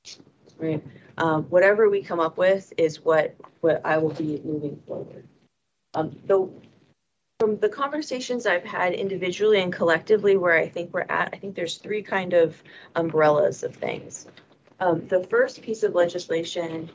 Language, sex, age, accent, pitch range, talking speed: English, female, 30-49, American, 155-185 Hz, 160 wpm